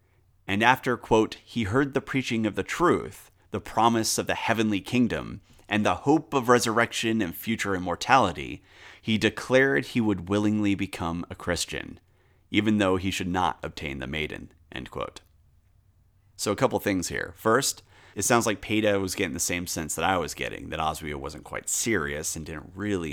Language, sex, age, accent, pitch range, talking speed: English, male, 30-49, American, 85-110 Hz, 180 wpm